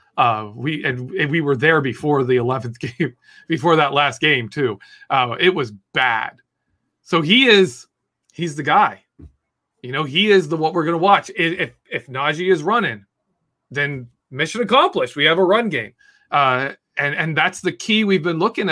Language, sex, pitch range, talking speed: English, male, 145-200 Hz, 185 wpm